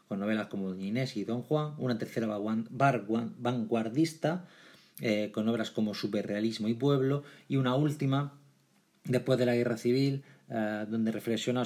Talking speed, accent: 150 wpm, Spanish